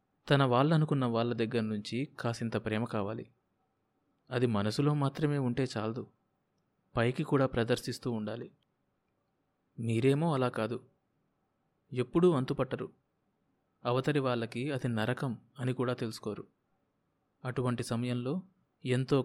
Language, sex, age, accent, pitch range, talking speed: Telugu, male, 30-49, native, 120-140 Hz, 95 wpm